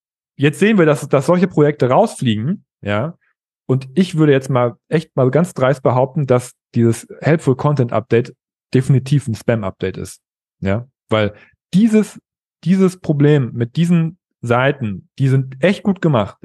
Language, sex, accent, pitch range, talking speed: German, male, German, 115-155 Hz, 150 wpm